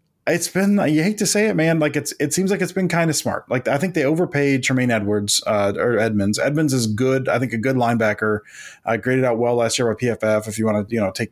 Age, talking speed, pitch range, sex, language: 20-39, 270 wpm, 115-145 Hz, male, English